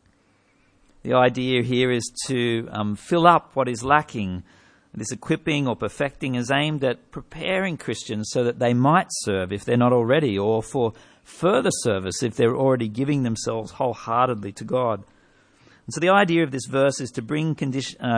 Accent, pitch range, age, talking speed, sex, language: Australian, 115-145 Hz, 50-69, 170 wpm, male, English